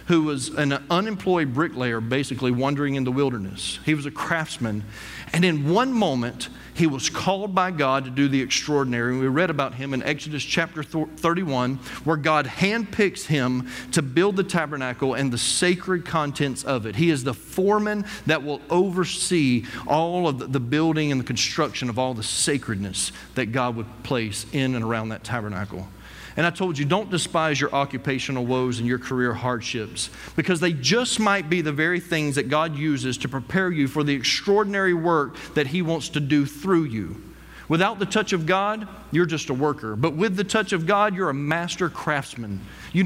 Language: English